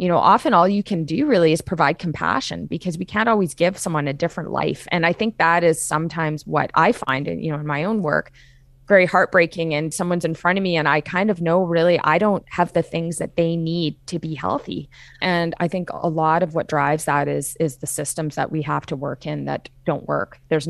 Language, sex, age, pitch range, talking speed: English, female, 20-39, 140-170 Hz, 245 wpm